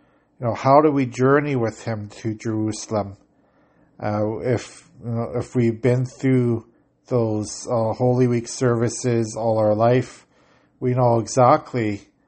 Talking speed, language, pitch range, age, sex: 140 wpm, English, 115-130 Hz, 50-69, male